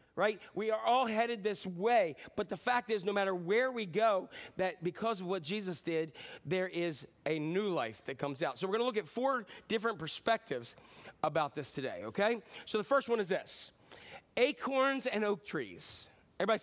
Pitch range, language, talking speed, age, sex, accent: 165-220 Hz, English, 195 wpm, 40-59, male, American